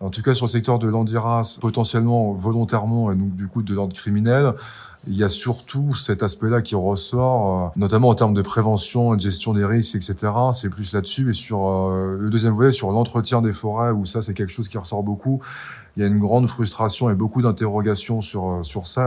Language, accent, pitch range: French, French, 100-120 Hz